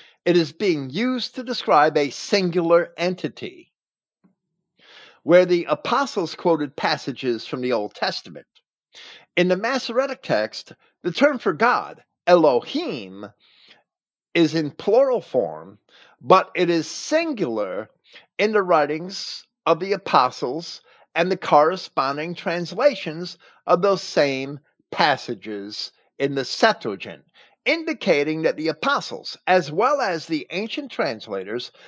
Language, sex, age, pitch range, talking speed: English, male, 50-69, 135-200 Hz, 115 wpm